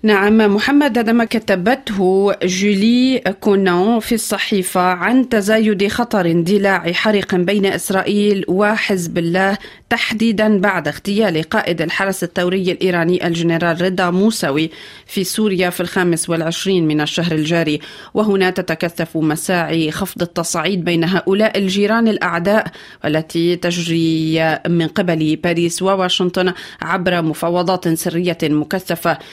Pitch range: 170-195 Hz